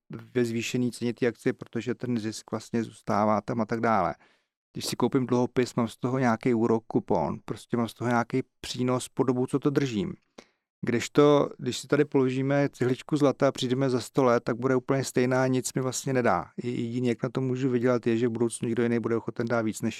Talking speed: 220 wpm